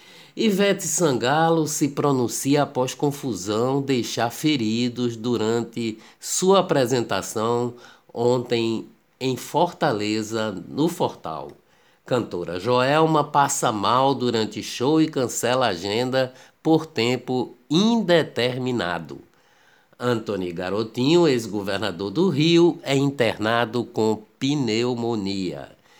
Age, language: 50-69, Portuguese